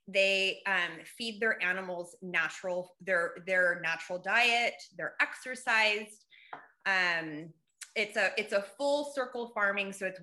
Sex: female